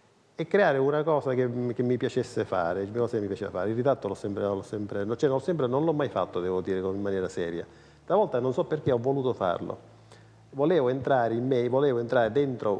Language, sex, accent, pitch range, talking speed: Italian, male, native, 100-125 Hz, 200 wpm